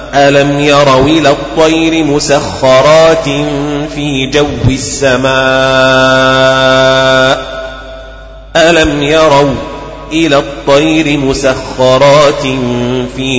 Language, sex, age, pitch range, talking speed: Arabic, male, 30-49, 125-145 Hz, 60 wpm